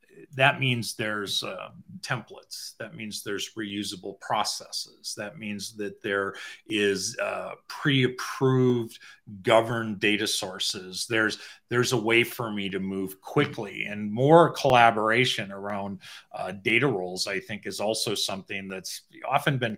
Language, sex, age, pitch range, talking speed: English, male, 40-59, 100-125 Hz, 135 wpm